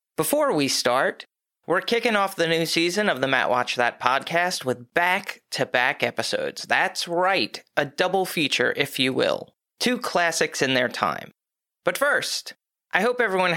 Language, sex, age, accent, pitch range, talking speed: English, male, 30-49, American, 135-185 Hz, 160 wpm